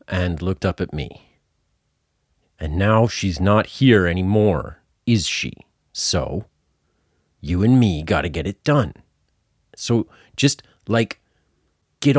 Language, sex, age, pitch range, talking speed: English, male, 40-59, 80-110 Hz, 125 wpm